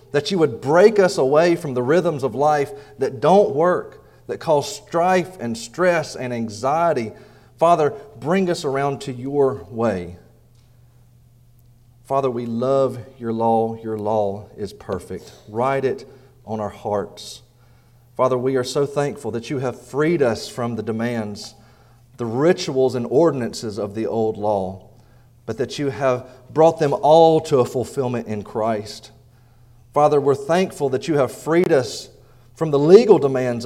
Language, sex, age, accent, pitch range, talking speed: English, male, 40-59, American, 115-140 Hz, 155 wpm